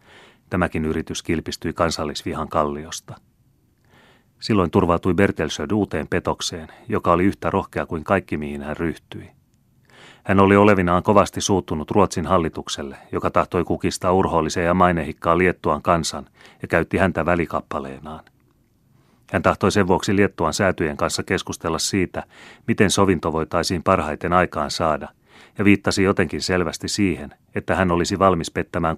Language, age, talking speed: Finnish, 30-49, 135 wpm